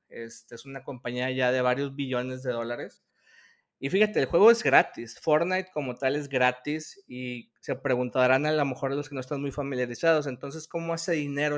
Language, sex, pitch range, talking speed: Spanish, male, 130-160 Hz, 195 wpm